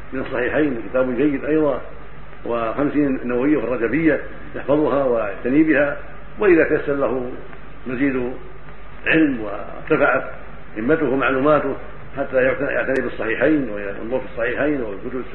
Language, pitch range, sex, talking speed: Arabic, 125-150 Hz, male, 105 wpm